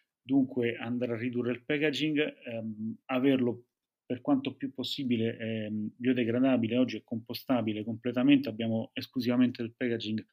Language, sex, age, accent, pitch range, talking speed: Italian, male, 30-49, native, 115-130 Hz, 120 wpm